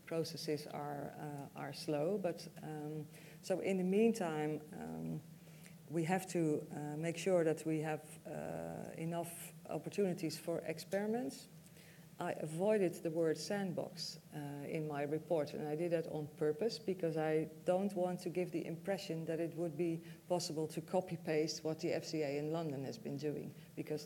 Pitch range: 155-180 Hz